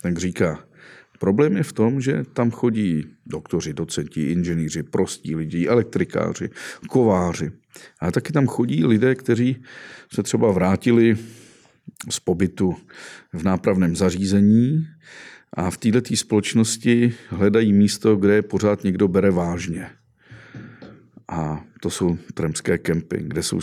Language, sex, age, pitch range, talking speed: Czech, male, 50-69, 85-115 Hz, 120 wpm